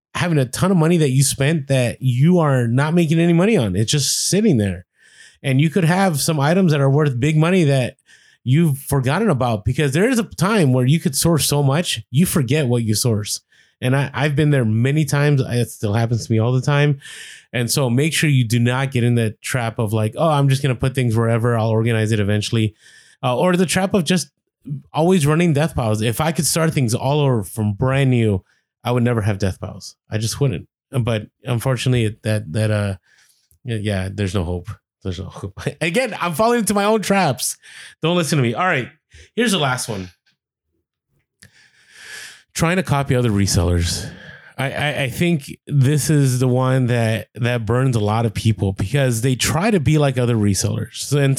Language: English